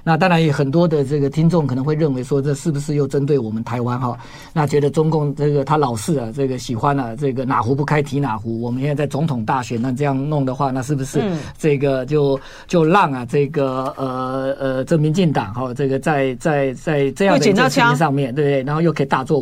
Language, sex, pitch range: Chinese, male, 135-160 Hz